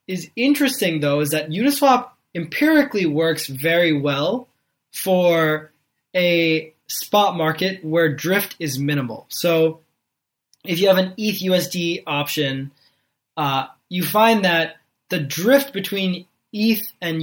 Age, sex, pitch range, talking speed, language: 20-39, male, 150-195 Hz, 120 wpm, English